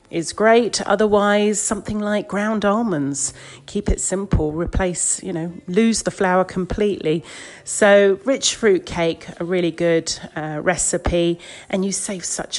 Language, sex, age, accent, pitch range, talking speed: English, female, 40-59, British, 160-200 Hz, 145 wpm